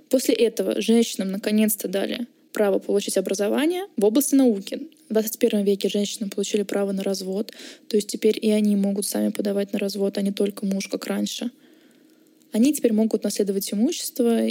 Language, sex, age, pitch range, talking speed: Russian, female, 20-39, 210-250 Hz, 165 wpm